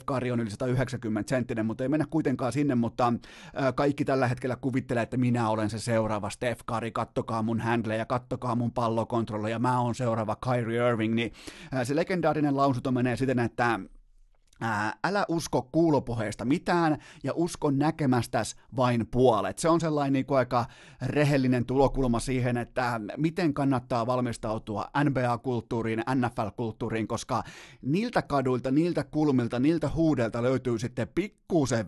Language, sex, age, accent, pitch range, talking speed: Finnish, male, 30-49, native, 115-145 Hz, 145 wpm